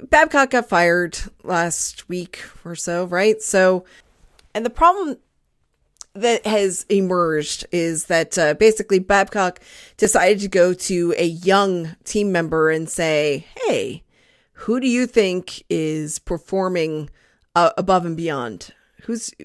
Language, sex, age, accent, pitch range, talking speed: English, female, 30-49, American, 170-220 Hz, 130 wpm